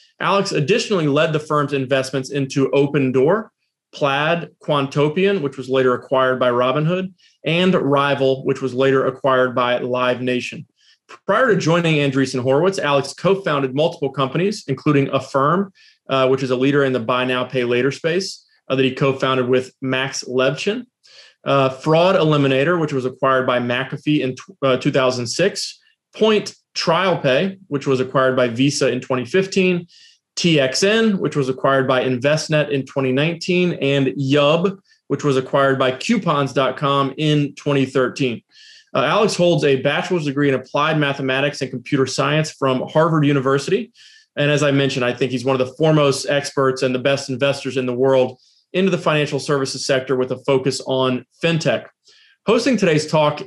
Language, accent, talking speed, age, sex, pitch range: English, American, 155 wpm, 30-49, male, 130-165 Hz